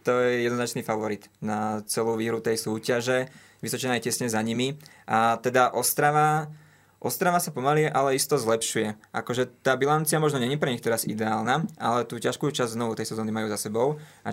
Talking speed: 180 wpm